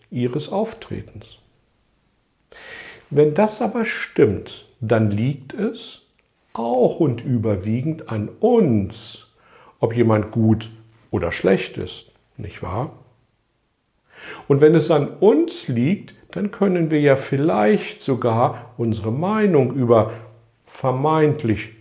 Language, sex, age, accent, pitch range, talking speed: German, male, 50-69, German, 115-165 Hz, 105 wpm